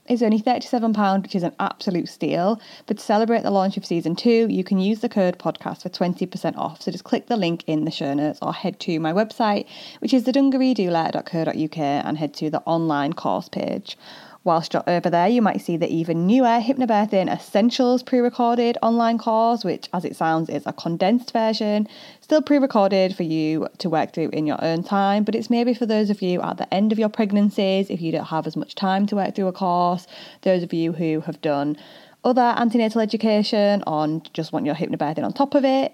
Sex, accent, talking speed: female, British, 215 wpm